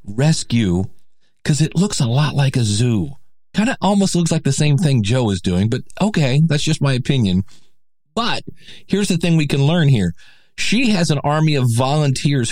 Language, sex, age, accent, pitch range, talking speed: English, male, 40-59, American, 120-165 Hz, 190 wpm